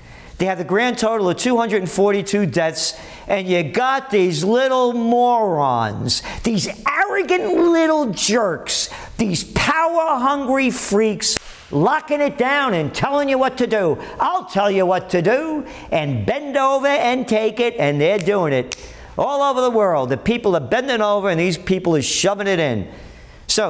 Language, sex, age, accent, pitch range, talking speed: English, male, 50-69, American, 150-225 Hz, 160 wpm